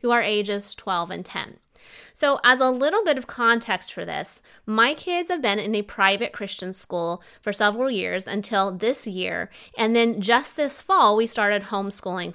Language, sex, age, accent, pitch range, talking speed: English, female, 20-39, American, 195-240 Hz, 180 wpm